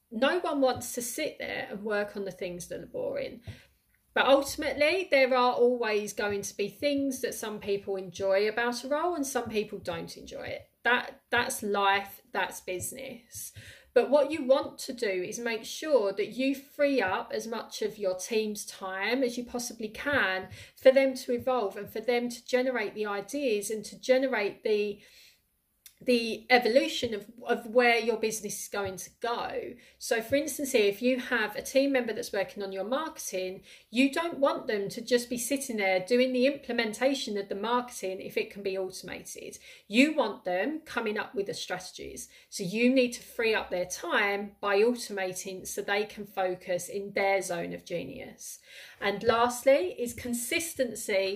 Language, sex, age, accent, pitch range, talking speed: English, female, 30-49, British, 200-260 Hz, 180 wpm